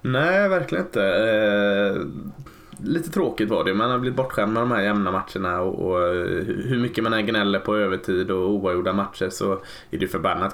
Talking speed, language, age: 190 wpm, Swedish, 20-39